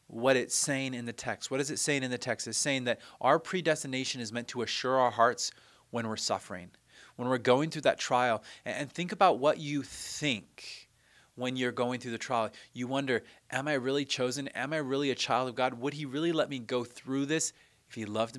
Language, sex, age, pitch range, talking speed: English, male, 30-49, 110-135 Hz, 225 wpm